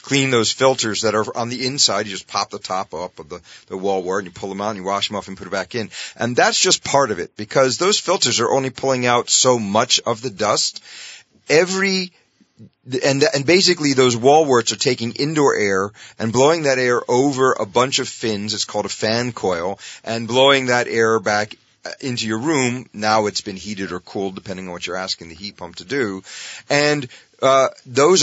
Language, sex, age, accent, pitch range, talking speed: English, male, 40-59, American, 100-130 Hz, 220 wpm